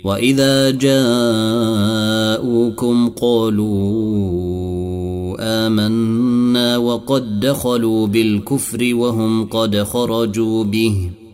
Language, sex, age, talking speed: Arabic, male, 30-49, 60 wpm